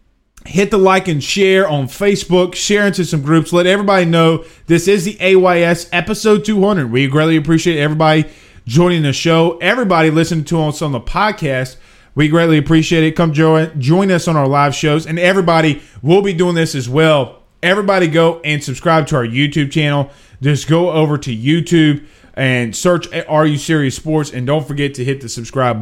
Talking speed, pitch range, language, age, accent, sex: 185 wpm, 130-180 Hz, English, 30-49, American, male